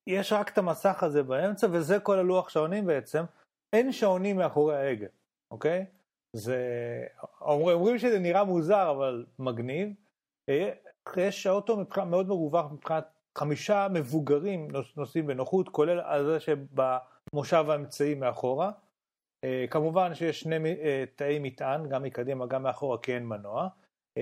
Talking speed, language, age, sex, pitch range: 125 wpm, Hebrew, 40-59, male, 135-190 Hz